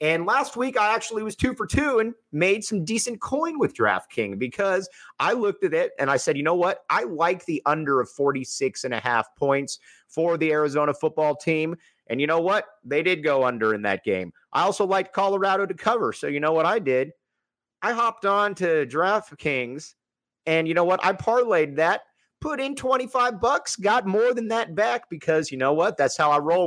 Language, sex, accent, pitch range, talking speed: English, male, American, 140-200 Hz, 210 wpm